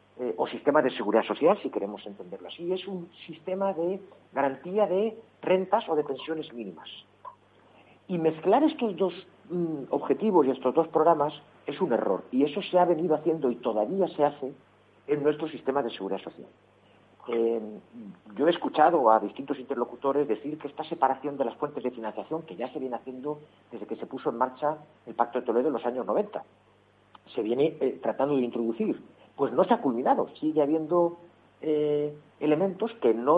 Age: 50-69